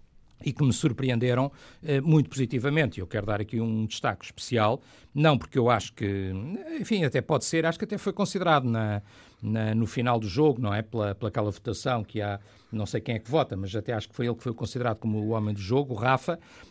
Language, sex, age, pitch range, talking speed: Portuguese, male, 50-69, 115-155 Hz, 225 wpm